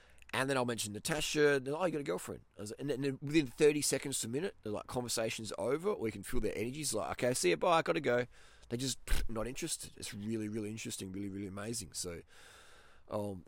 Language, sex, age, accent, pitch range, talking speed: English, male, 20-39, Australian, 105-145 Hz, 250 wpm